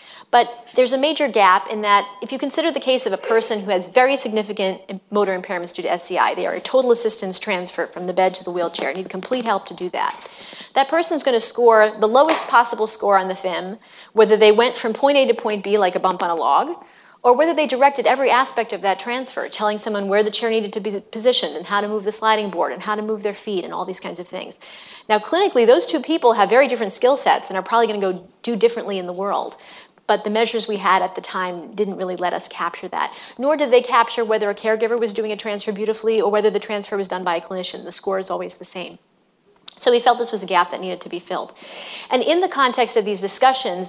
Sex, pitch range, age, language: female, 190-245 Hz, 30-49, English